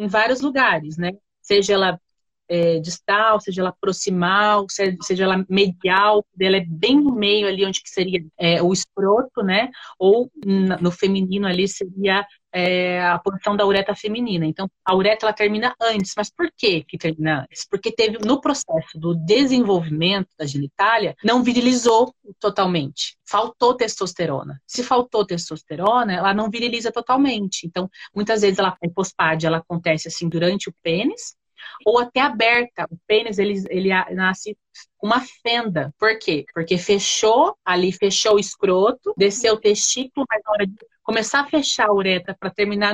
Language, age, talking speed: Portuguese, 30-49, 165 wpm